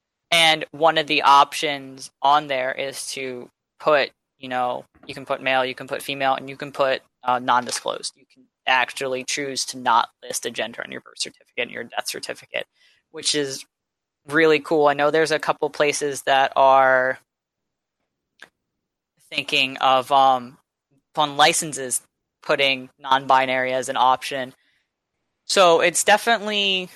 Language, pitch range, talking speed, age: English, 130-155 Hz, 150 wpm, 10-29